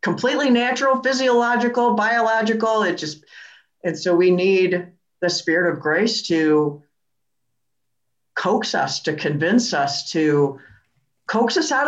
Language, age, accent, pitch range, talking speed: English, 50-69, American, 155-200 Hz, 120 wpm